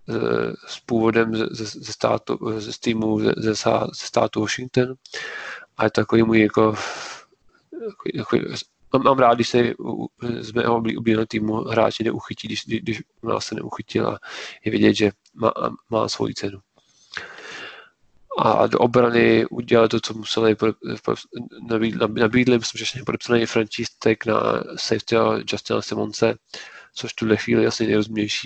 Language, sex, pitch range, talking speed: Czech, male, 110-115 Hz, 140 wpm